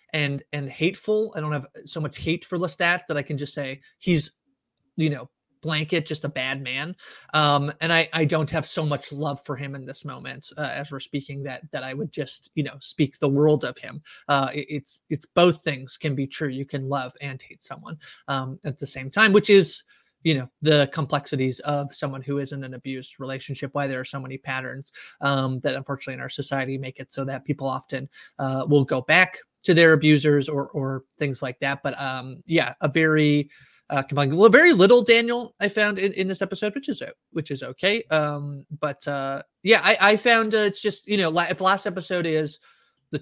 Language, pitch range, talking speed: English, 140-175 Hz, 215 wpm